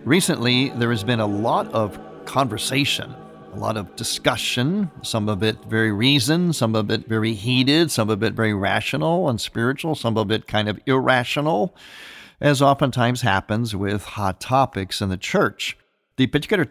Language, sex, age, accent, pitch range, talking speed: English, male, 50-69, American, 110-140 Hz, 165 wpm